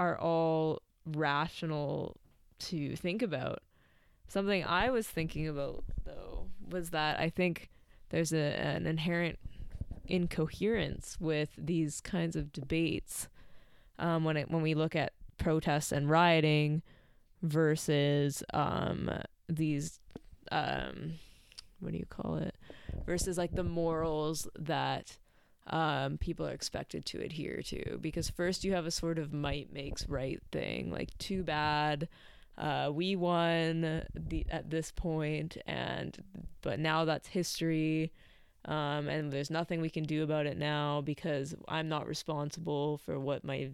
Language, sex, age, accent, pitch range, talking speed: English, female, 20-39, American, 150-165 Hz, 135 wpm